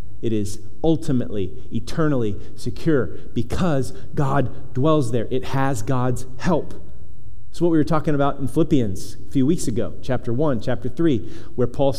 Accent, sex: American, male